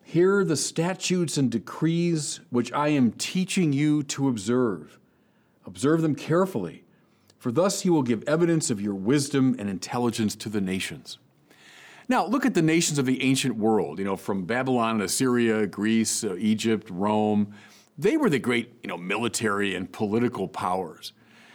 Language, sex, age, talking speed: English, male, 40-59, 160 wpm